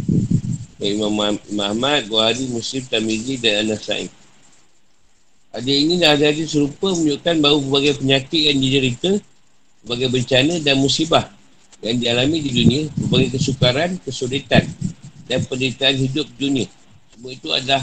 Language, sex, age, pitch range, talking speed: Malay, male, 50-69, 120-145 Hz, 120 wpm